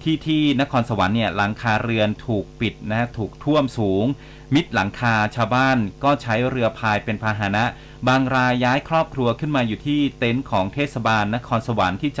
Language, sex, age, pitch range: Thai, male, 30-49, 110-140 Hz